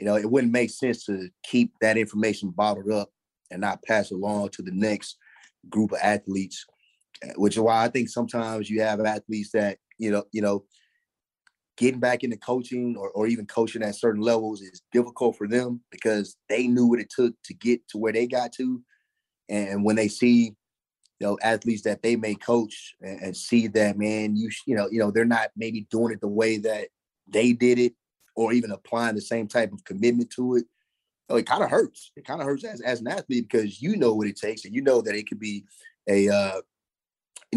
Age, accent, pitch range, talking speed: 30-49, American, 105-125 Hz, 215 wpm